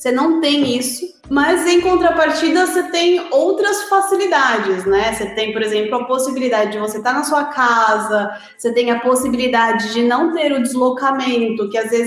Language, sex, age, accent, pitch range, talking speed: Portuguese, female, 30-49, Brazilian, 230-310 Hz, 180 wpm